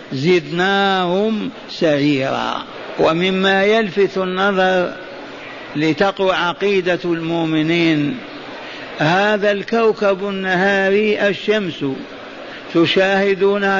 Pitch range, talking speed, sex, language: 185-210 Hz, 55 wpm, male, Arabic